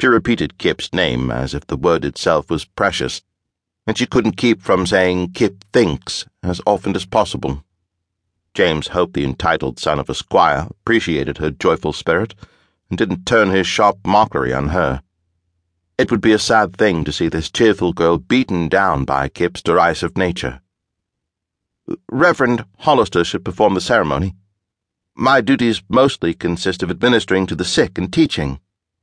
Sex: male